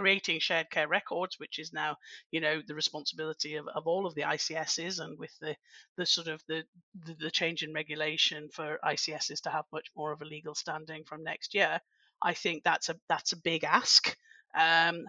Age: 40-59